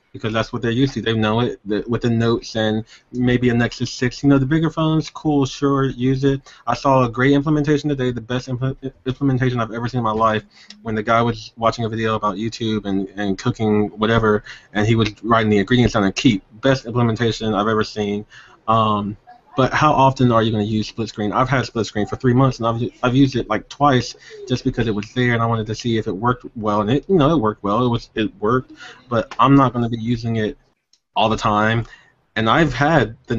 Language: English